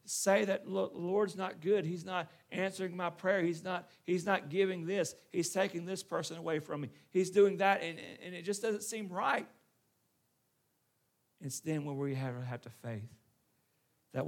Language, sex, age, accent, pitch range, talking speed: English, male, 40-59, American, 120-165 Hz, 185 wpm